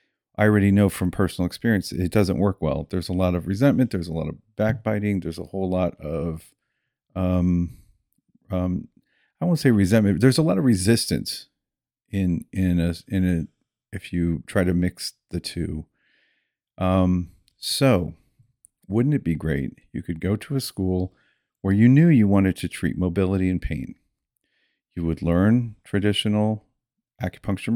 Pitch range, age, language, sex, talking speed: 90-115 Hz, 40-59, English, male, 165 wpm